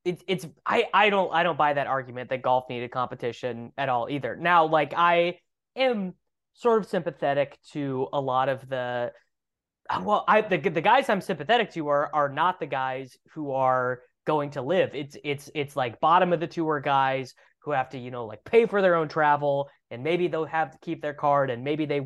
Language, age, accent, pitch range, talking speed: English, 20-39, American, 130-160 Hz, 210 wpm